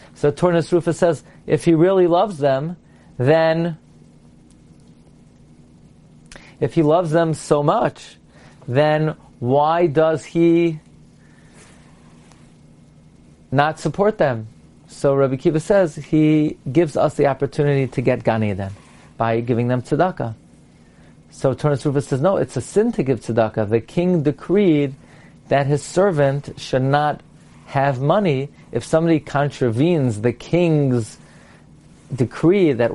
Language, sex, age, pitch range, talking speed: English, male, 40-59, 120-165 Hz, 125 wpm